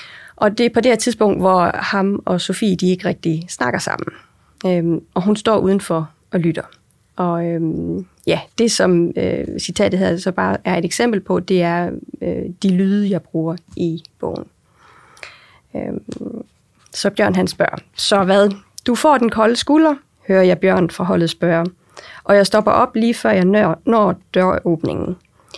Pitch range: 180-215 Hz